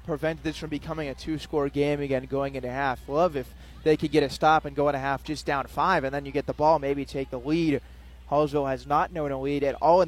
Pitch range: 135-160 Hz